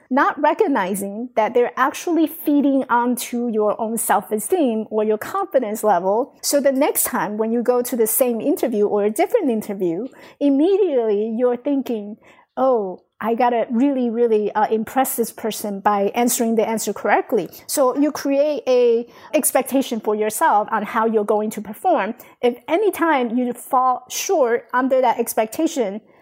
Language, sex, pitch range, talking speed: English, female, 220-280 Hz, 160 wpm